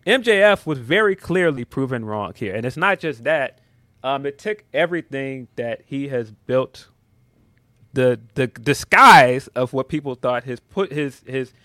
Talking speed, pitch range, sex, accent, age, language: 160 wpm, 120-160 Hz, male, American, 30-49, English